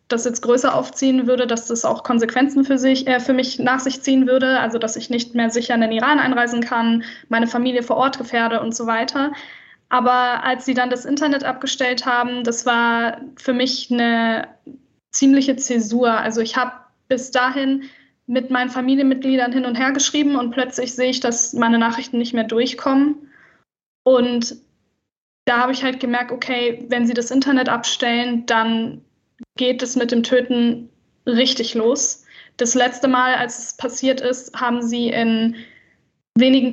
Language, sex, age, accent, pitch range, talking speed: German, female, 10-29, German, 235-265 Hz, 170 wpm